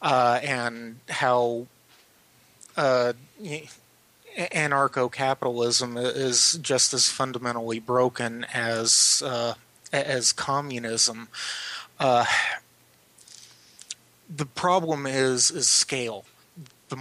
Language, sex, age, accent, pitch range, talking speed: English, male, 30-49, American, 125-145 Hz, 80 wpm